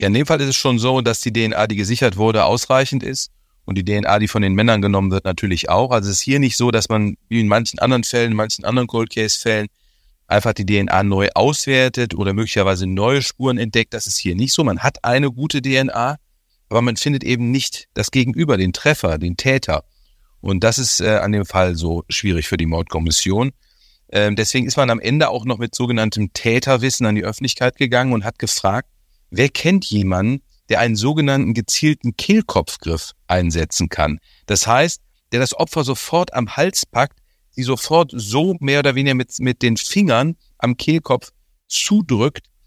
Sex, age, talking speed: male, 40-59, 195 wpm